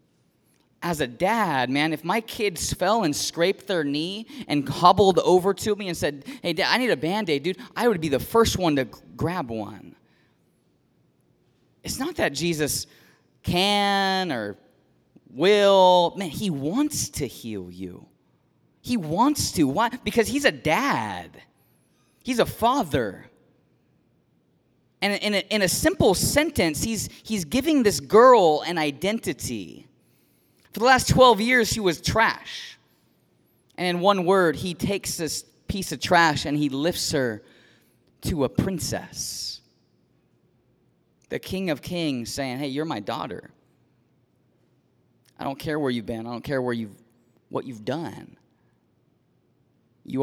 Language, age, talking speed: English, 30-49, 145 wpm